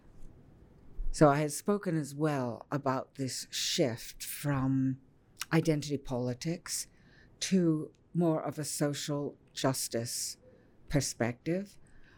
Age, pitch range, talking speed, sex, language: 60-79, 130-165 Hz, 95 wpm, female, French